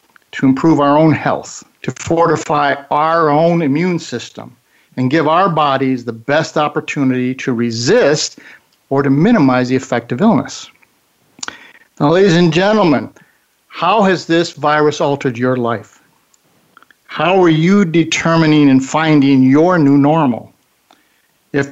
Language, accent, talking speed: English, American, 135 wpm